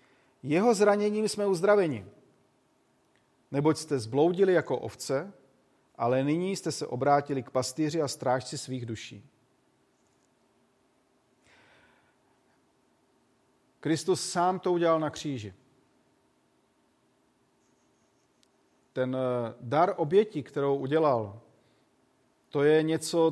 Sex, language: male, Czech